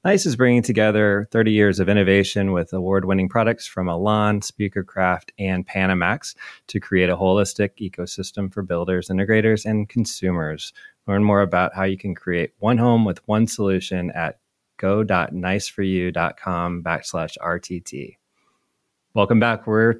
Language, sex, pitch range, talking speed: English, male, 95-110 Hz, 135 wpm